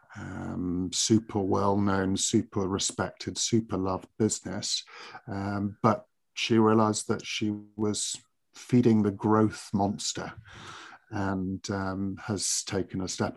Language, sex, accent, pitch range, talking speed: English, male, British, 100-115 Hz, 115 wpm